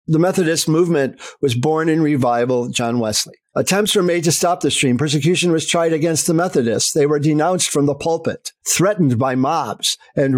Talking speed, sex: 185 wpm, male